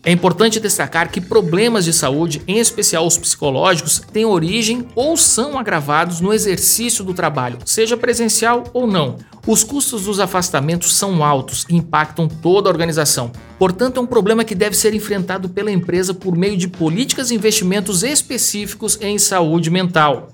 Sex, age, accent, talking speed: male, 60-79, Brazilian, 160 wpm